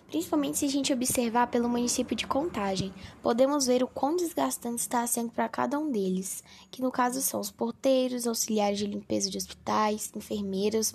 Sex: female